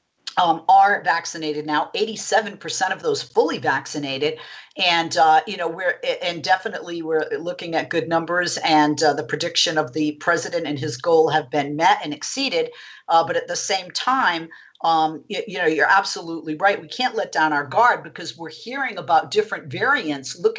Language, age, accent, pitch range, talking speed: English, 50-69, American, 155-190 Hz, 180 wpm